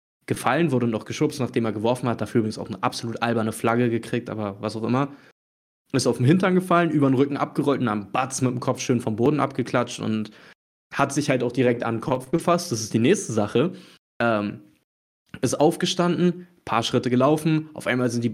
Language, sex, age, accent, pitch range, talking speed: German, male, 20-39, German, 115-140 Hz, 215 wpm